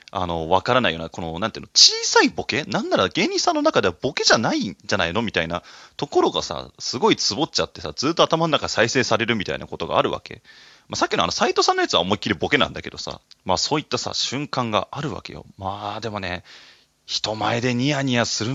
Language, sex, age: Japanese, male, 20-39